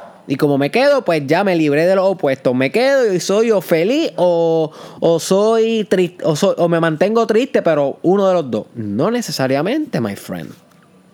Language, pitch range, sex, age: Spanish, 140-180 Hz, male, 20-39